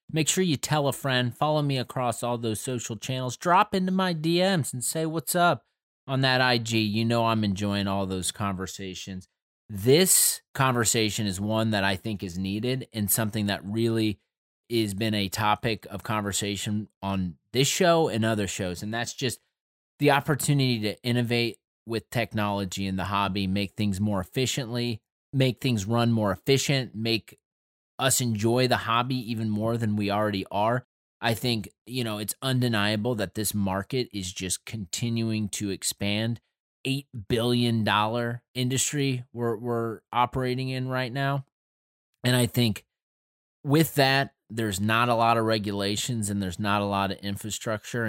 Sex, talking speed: male, 160 wpm